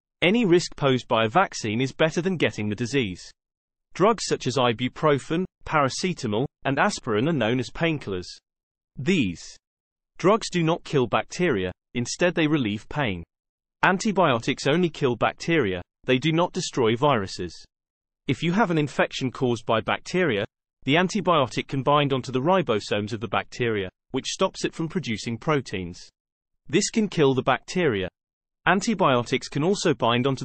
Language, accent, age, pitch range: English, British, 30-49, 115-170 Hz